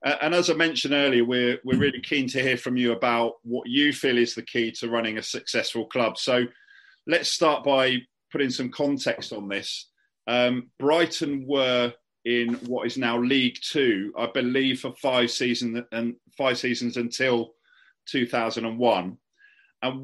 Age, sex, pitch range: 40-59, male, 115-135 Hz